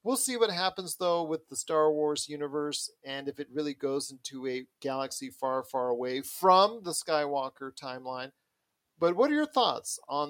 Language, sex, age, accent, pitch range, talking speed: English, male, 40-59, American, 130-160 Hz, 180 wpm